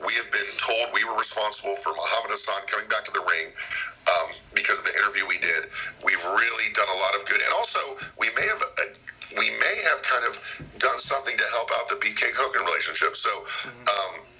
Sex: male